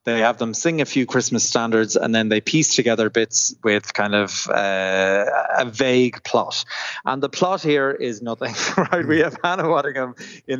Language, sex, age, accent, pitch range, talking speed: English, male, 20-39, Irish, 110-130 Hz, 185 wpm